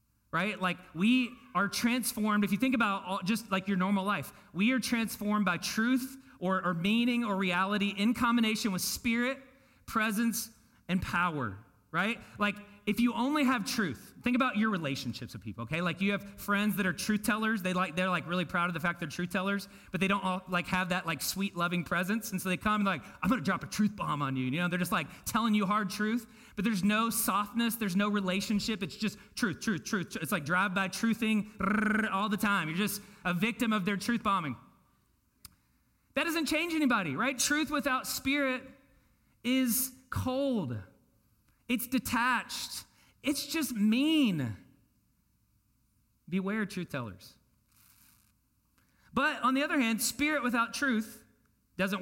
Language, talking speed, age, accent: English, 175 wpm, 30-49, American